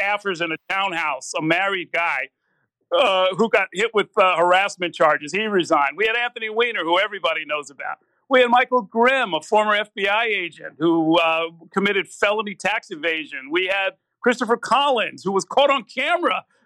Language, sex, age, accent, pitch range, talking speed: English, male, 50-69, American, 175-230 Hz, 175 wpm